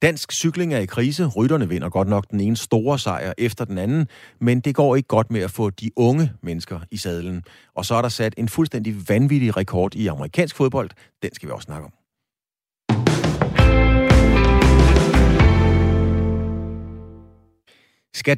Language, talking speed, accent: Danish, 155 wpm, native